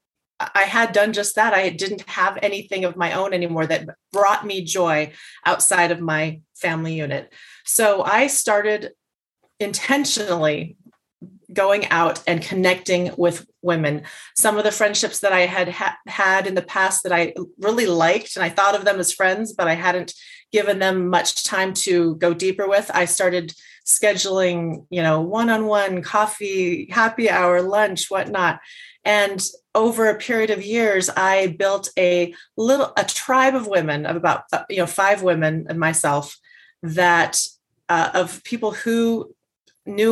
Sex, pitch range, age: female, 175-210 Hz, 30-49